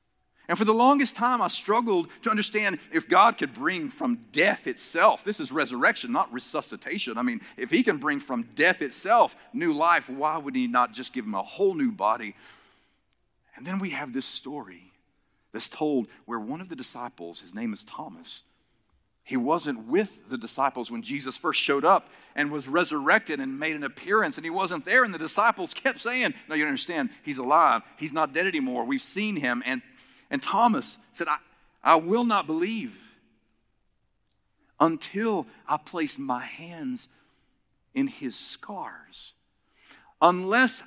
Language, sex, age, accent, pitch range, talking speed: English, male, 50-69, American, 155-250 Hz, 170 wpm